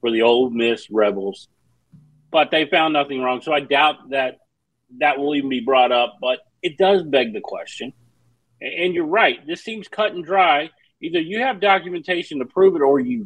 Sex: male